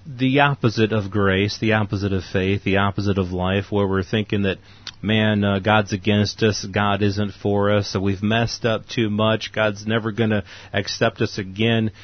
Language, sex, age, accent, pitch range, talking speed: English, male, 30-49, American, 100-120 Hz, 185 wpm